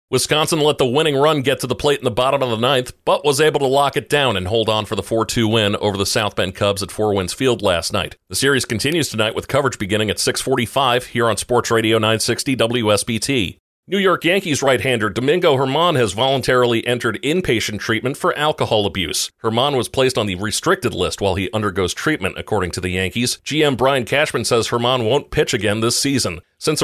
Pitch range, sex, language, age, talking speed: 105-135 Hz, male, English, 40-59, 210 wpm